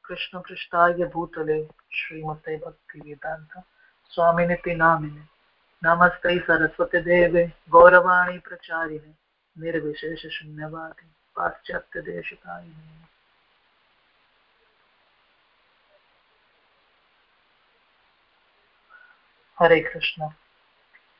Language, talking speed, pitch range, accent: English, 50 wpm, 160-180 Hz, Indian